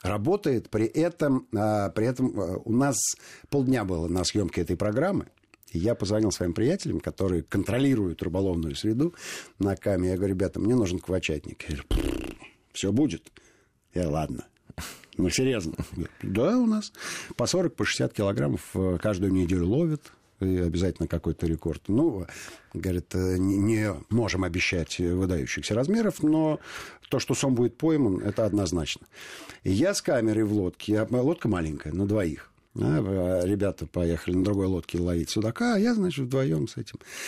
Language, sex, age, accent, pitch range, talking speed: Russian, male, 50-69, native, 90-120 Hz, 150 wpm